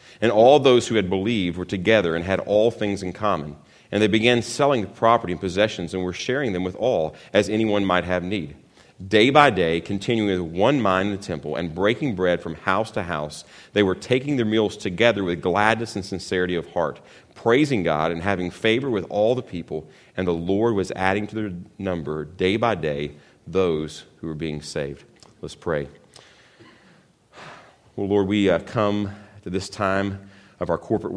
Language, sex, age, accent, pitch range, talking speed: English, male, 40-59, American, 85-100 Hz, 195 wpm